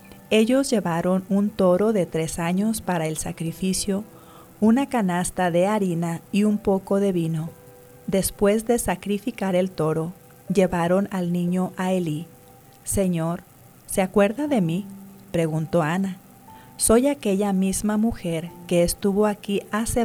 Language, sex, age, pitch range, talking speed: English, female, 40-59, 165-195 Hz, 130 wpm